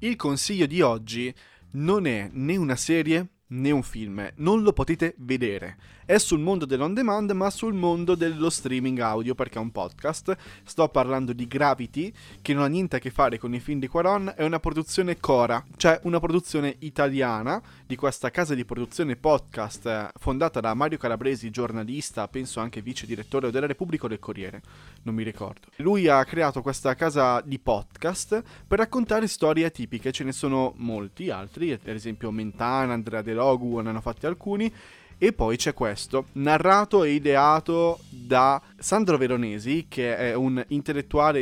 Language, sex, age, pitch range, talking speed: Italian, male, 20-39, 120-165 Hz, 170 wpm